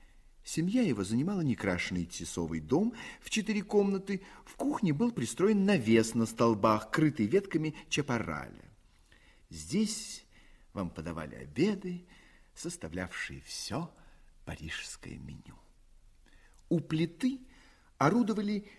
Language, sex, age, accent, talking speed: Russian, male, 40-59, native, 95 wpm